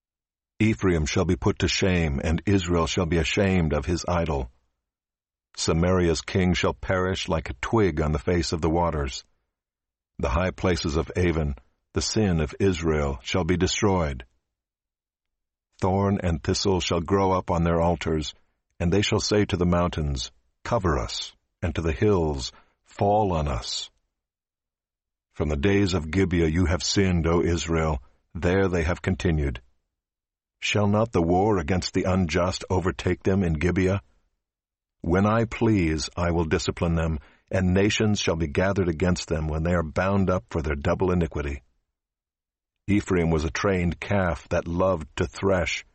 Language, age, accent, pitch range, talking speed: English, 60-79, American, 80-95 Hz, 160 wpm